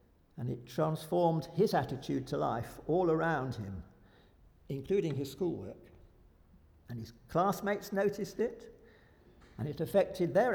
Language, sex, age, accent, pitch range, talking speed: English, male, 60-79, British, 115-165 Hz, 125 wpm